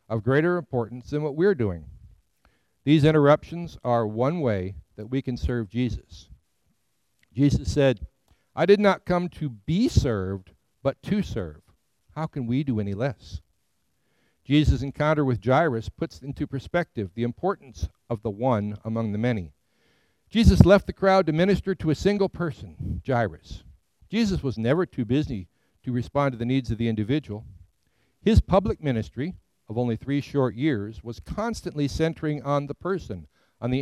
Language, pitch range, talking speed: English, 115-160 Hz, 160 wpm